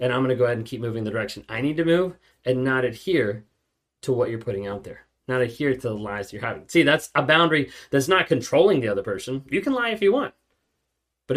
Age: 20-39